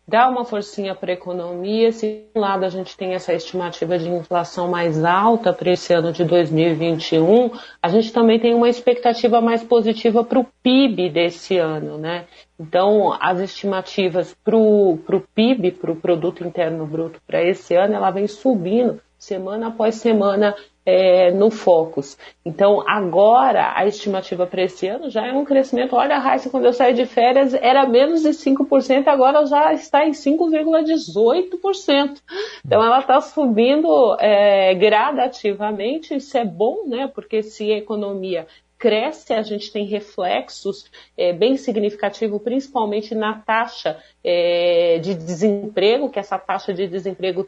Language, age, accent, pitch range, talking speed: Portuguese, 40-59, Brazilian, 180-245 Hz, 150 wpm